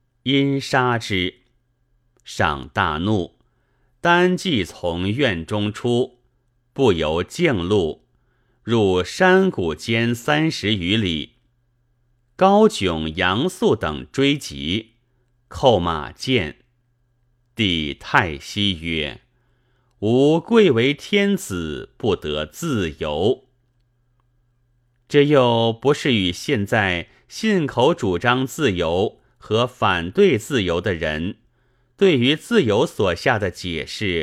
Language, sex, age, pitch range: Chinese, male, 30-49, 95-125 Hz